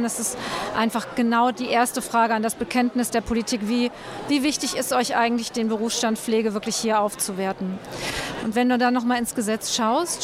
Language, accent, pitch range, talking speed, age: German, German, 225-255 Hz, 190 wpm, 40-59